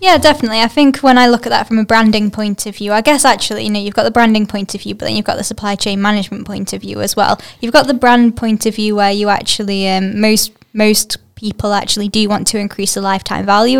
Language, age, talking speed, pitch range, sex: English, 10-29, 270 wpm, 200-225 Hz, female